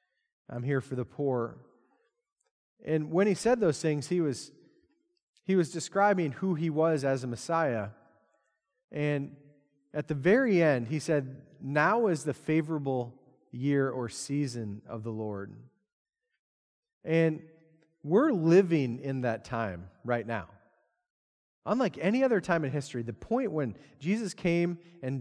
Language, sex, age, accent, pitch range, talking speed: English, male, 30-49, American, 130-195 Hz, 140 wpm